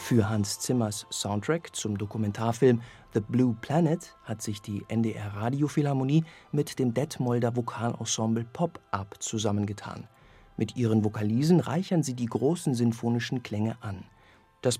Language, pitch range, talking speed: German, 110-150 Hz, 125 wpm